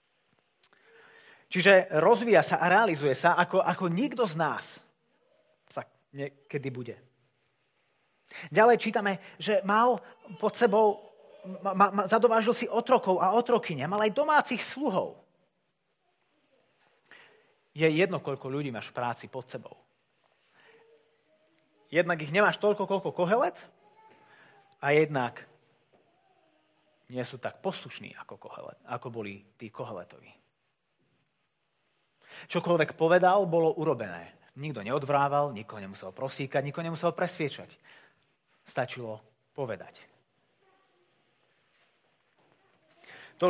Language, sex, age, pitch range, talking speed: Slovak, male, 30-49, 135-200 Hz, 95 wpm